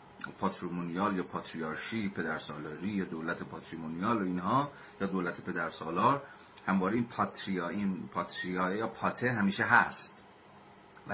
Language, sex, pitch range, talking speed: Persian, male, 90-105 Hz, 115 wpm